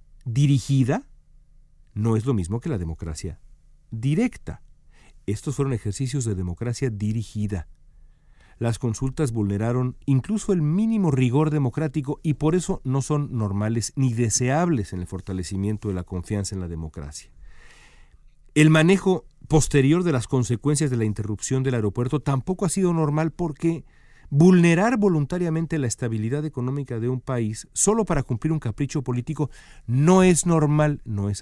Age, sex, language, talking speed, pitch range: 50-69, male, Spanish, 145 wpm, 105-155 Hz